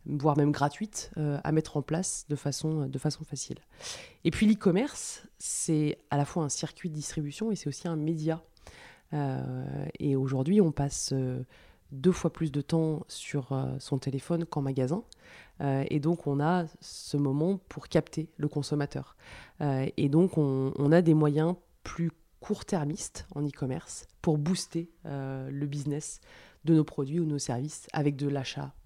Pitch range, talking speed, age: 135-160 Hz, 170 wpm, 20-39